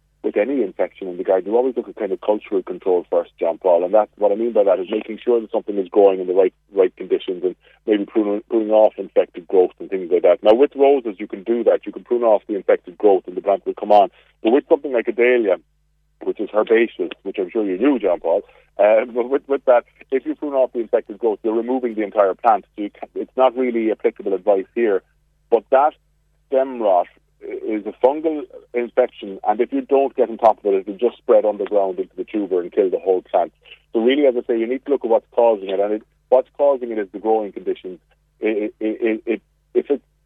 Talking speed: 245 wpm